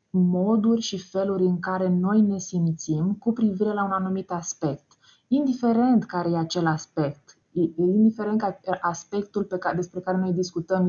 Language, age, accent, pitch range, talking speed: Romanian, 20-39, native, 170-190 Hz, 145 wpm